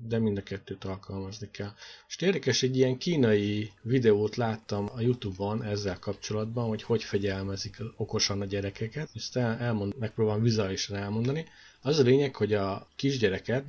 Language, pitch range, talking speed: Hungarian, 100-125 Hz, 160 wpm